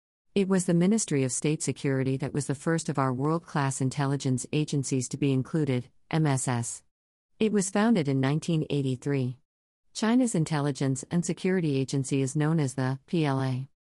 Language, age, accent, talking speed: English, 50-69, American, 150 wpm